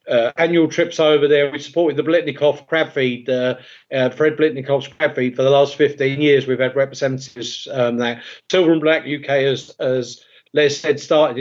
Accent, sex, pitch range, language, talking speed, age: British, male, 135-160 Hz, English, 190 wpm, 40-59